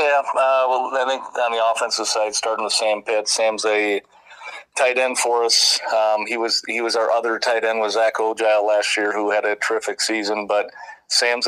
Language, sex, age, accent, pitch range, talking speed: English, male, 40-59, American, 105-110 Hz, 210 wpm